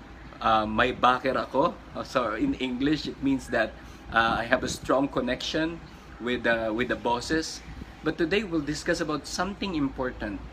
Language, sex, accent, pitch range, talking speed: Filipino, male, native, 125-200 Hz, 170 wpm